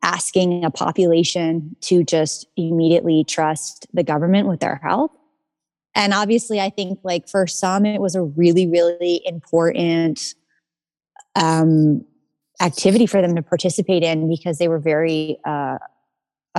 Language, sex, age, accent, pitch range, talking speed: English, female, 20-39, American, 165-190 Hz, 135 wpm